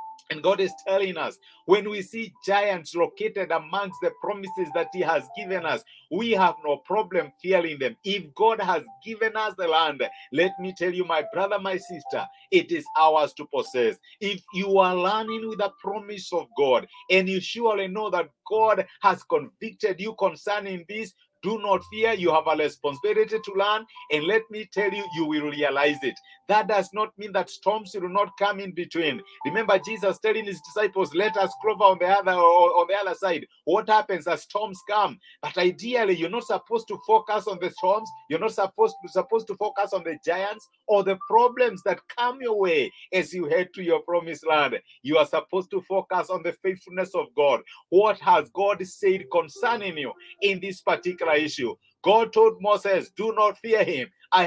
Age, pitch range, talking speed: 50-69, 180-220 Hz, 195 wpm